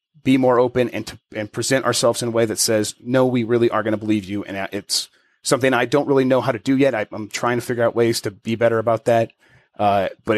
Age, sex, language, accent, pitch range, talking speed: 30-49, male, English, American, 115-140 Hz, 265 wpm